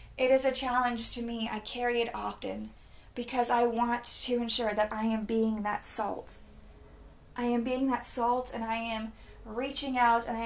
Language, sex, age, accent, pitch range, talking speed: English, female, 30-49, American, 215-245 Hz, 190 wpm